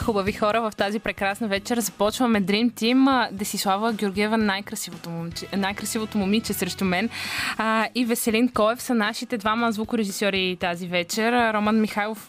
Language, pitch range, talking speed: Bulgarian, 195-240 Hz, 140 wpm